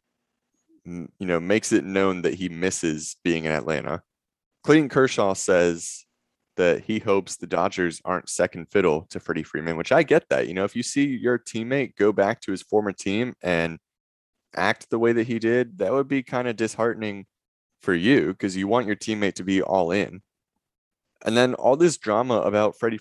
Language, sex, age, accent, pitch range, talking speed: English, male, 20-39, American, 90-115 Hz, 190 wpm